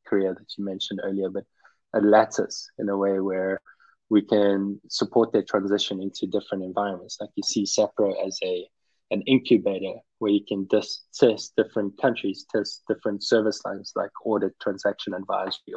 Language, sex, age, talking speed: English, male, 20-39, 165 wpm